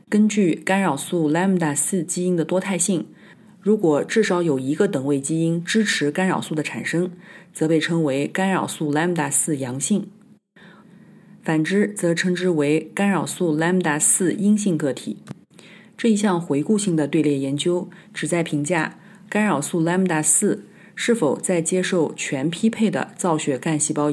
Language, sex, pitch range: Chinese, female, 150-195 Hz